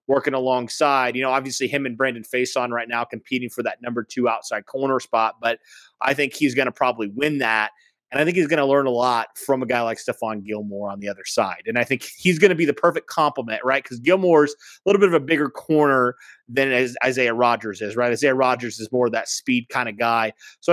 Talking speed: 240 wpm